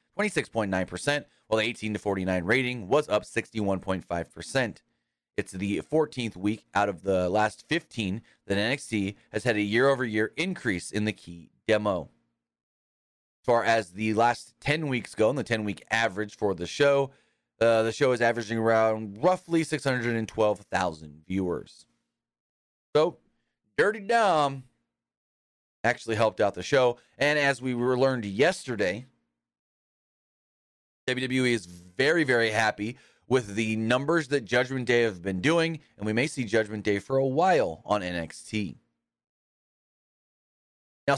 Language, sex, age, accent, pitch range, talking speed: English, male, 30-49, American, 95-125 Hz, 135 wpm